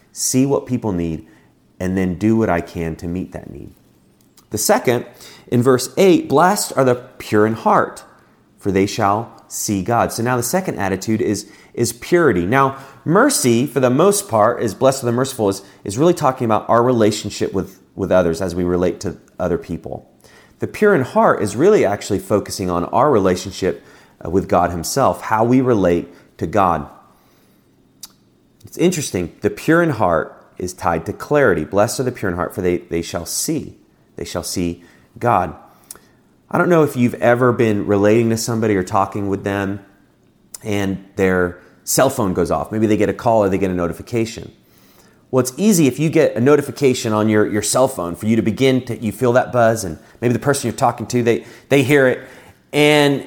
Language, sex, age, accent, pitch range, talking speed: English, male, 30-49, American, 95-130 Hz, 195 wpm